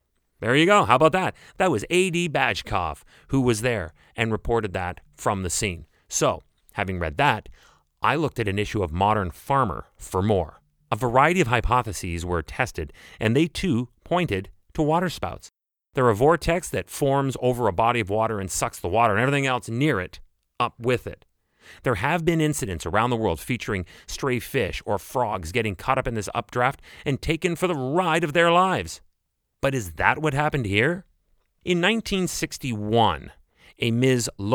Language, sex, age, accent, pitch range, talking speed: English, male, 30-49, American, 100-150 Hz, 175 wpm